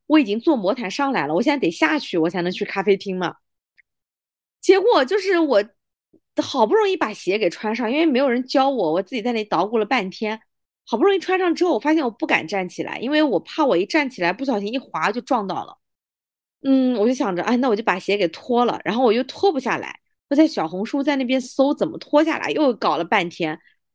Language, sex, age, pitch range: Chinese, female, 20-39, 200-295 Hz